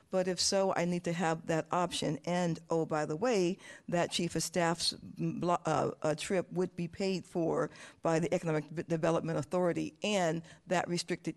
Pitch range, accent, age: 160-180 Hz, American, 50-69